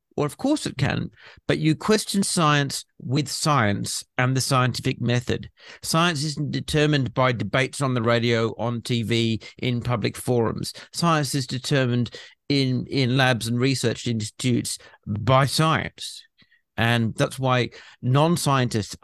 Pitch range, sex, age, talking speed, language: 120-145 Hz, male, 50-69, 135 wpm, English